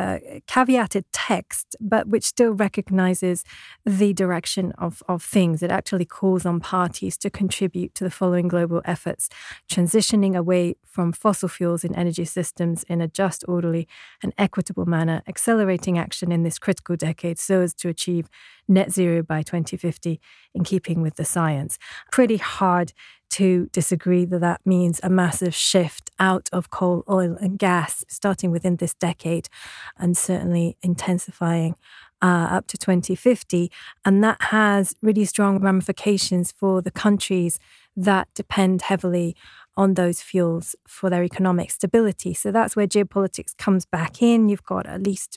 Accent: British